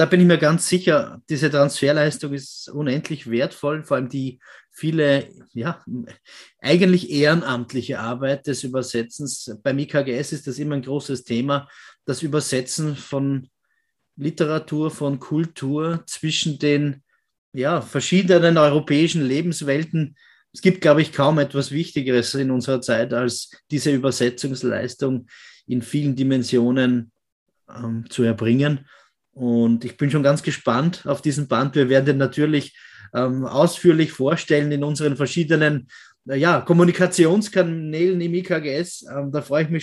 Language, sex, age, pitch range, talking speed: German, male, 30-49, 130-165 Hz, 130 wpm